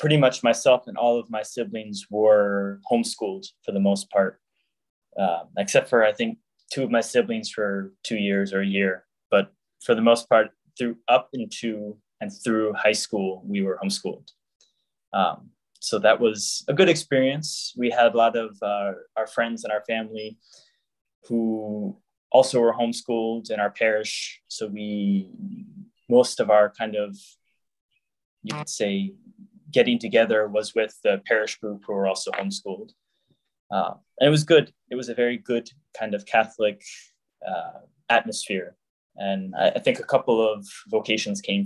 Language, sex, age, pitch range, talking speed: English, male, 10-29, 105-135 Hz, 165 wpm